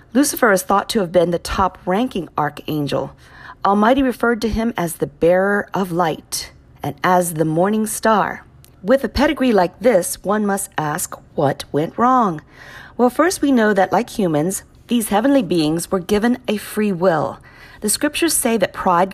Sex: female